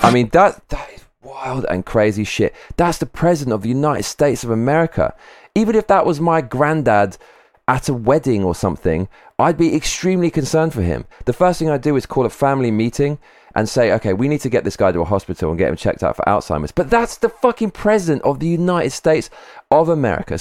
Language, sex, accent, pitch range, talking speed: English, male, British, 100-155 Hz, 220 wpm